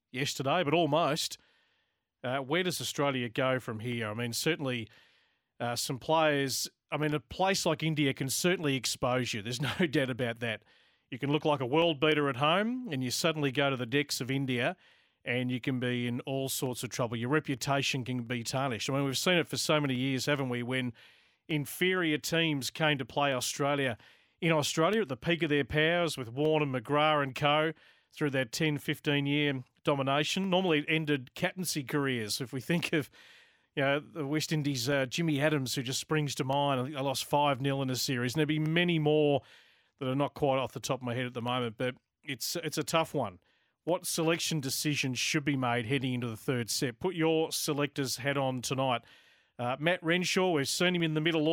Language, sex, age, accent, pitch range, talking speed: English, male, 40-59, Australian, 130-155 Hz, 205 wpm